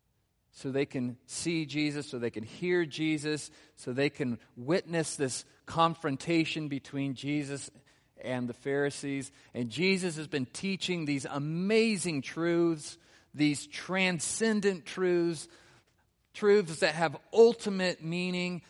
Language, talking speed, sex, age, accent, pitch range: English, 120 wpm, male, 40-59, American, 140-180 Hz